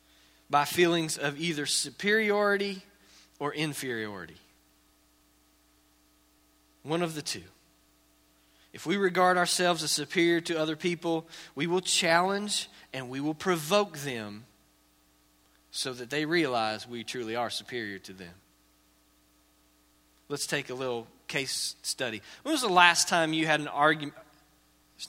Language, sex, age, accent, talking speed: English, male, 40-59, American, 130 wpm